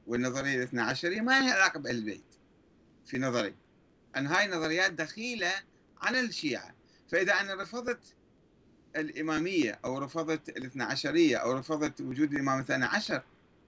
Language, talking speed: Arabic, 125 wpm